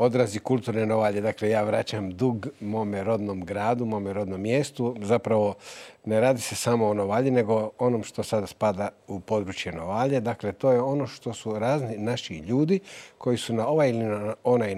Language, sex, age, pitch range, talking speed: English, male, 50-69, 105-125 Hz, 175 wpm